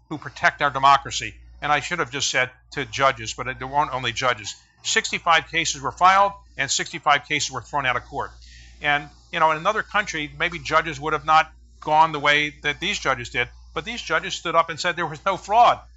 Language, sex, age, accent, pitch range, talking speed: English, male, 50-69, American, 135-170 Hz, 220 wpm